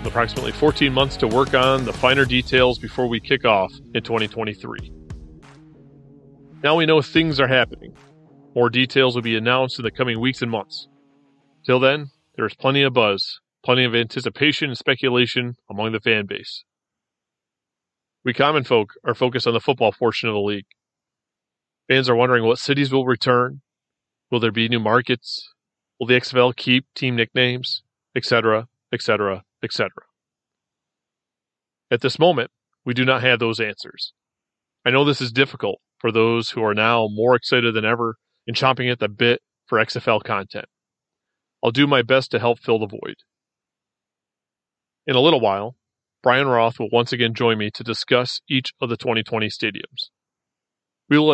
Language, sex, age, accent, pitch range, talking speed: English, male, 30-49, American, 115-135 Hz, 165 wpm